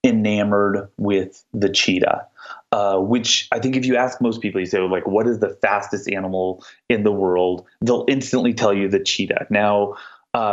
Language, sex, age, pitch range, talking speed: English, male, 30-49, 100-135 Hz, 185 wpm